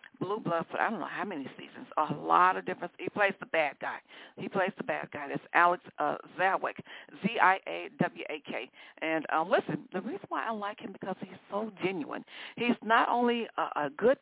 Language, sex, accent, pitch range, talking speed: English, female, American, 165-215 Hz, 200 wpm